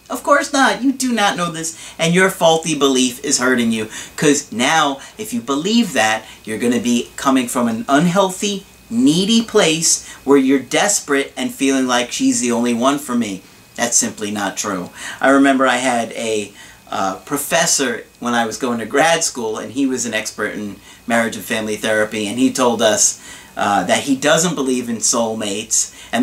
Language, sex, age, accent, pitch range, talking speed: English, male, 40-59, American, 115-150 Hz, 190 wpm